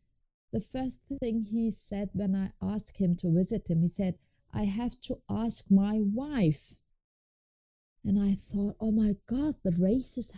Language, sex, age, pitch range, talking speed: English, female, 30-49, 185-280 Hz, 160 wpm